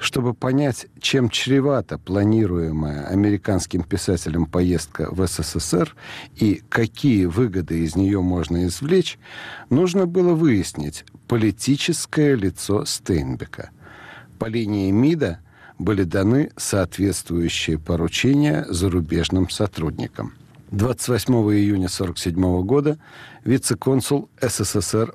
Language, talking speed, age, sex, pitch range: Russian, 90 wpm, 60-79, male, 90-130 Hz